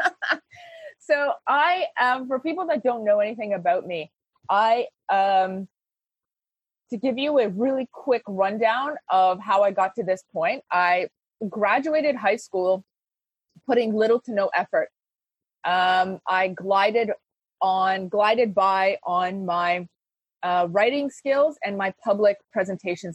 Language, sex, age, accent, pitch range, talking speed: English, female, 20-39, American, 195-260 Hz, 130 wpm